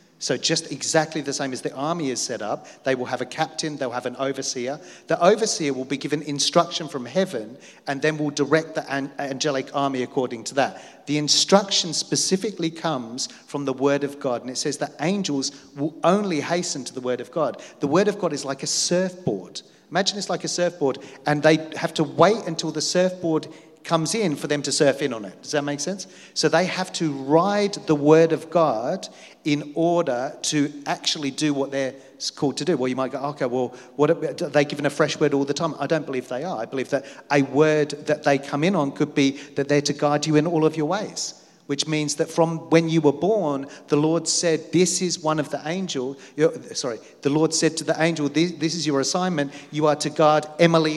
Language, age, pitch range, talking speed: English, 40-59, 140-165 Hz, 225 wpm